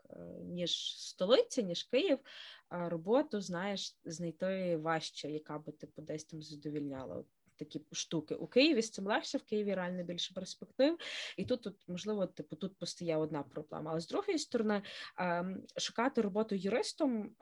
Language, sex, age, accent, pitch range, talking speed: Ukrainian, female, 20-39, native, 165-200 Hz, 150 wpm